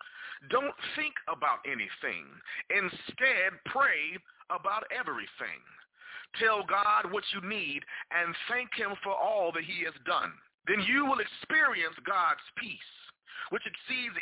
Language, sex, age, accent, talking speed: English, male, 40-59, American, 125 wpm